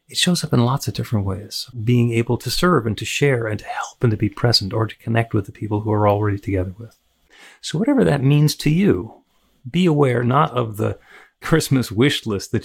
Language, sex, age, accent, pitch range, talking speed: English, male, 40-59, American, 105-135 Hz, 230 wpm